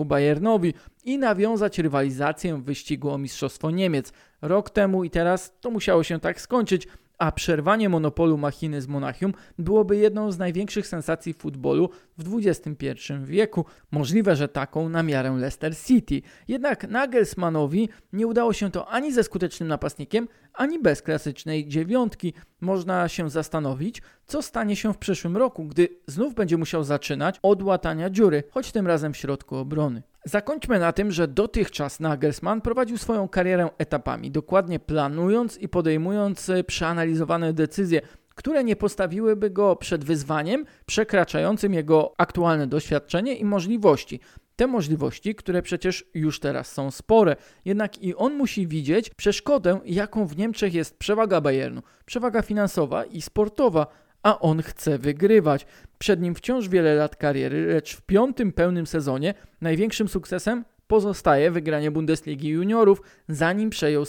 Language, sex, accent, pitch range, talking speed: Polish, male, native, 155-210 Hz, 140 wpm